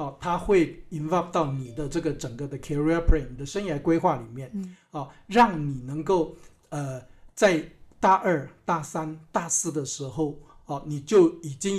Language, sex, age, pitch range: Chinese, male, 60-79, 145-180 Hz